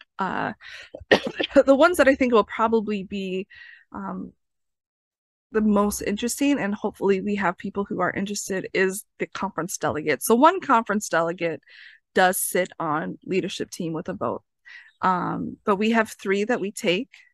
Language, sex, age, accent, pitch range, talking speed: English, female, 20-39, American, 180-220 Hz, 155 wpm